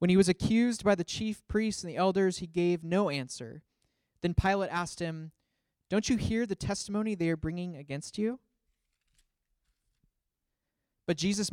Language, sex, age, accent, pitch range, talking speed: English, male, 20-39, American, 150-195 Hz, 160 wpm